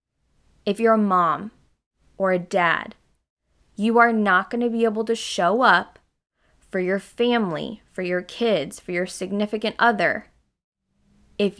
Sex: female